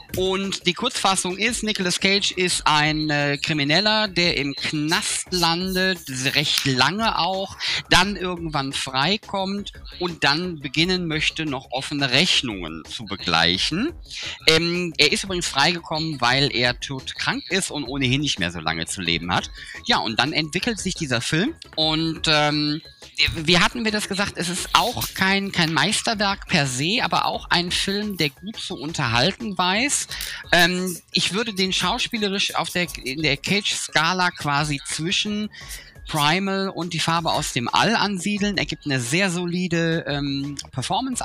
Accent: German